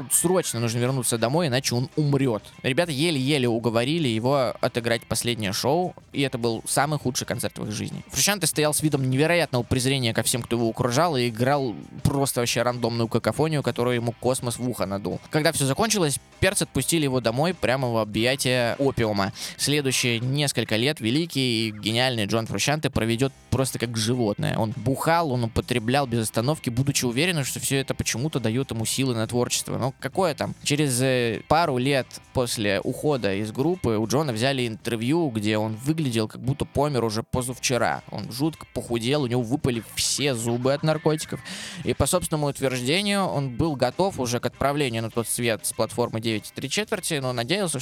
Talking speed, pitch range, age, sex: 170 wpm, 120-150 Hz, 20-39, male